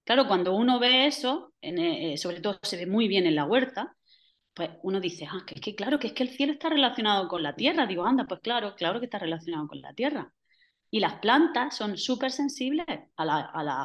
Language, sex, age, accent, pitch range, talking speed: Spanish, female, 30-49, Spanish, 180-265 Hz, 230 wpm